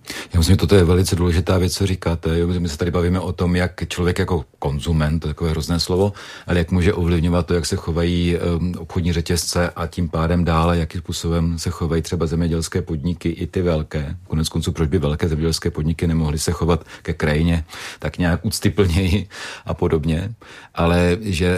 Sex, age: male, 40-59